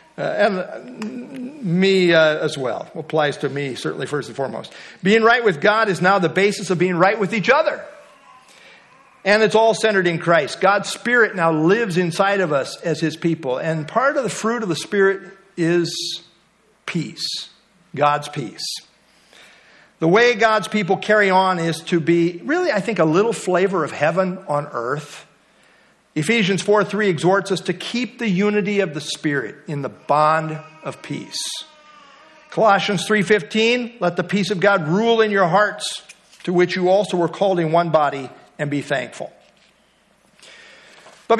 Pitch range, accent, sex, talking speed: 165-220 Hz, American, male, 170 wpm